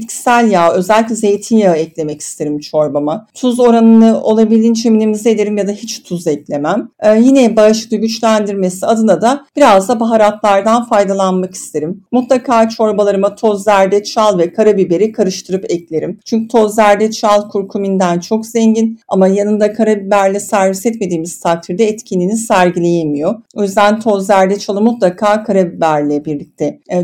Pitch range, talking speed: 180-230 Hz, 130 wpm